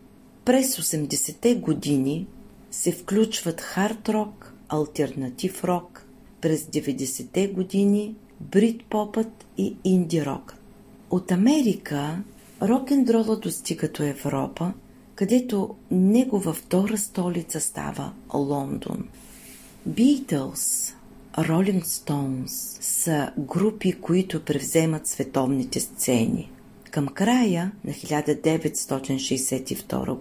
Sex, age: female, 40-59